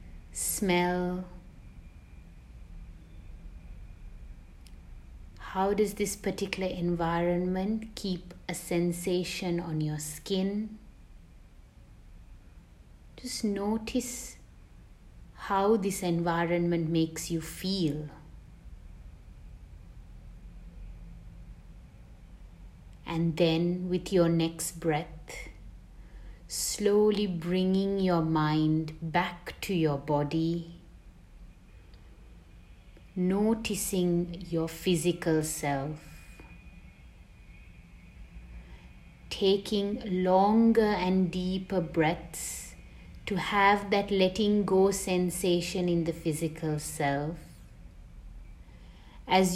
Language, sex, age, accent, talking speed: English, female, 30-49, Indian, 65 wpm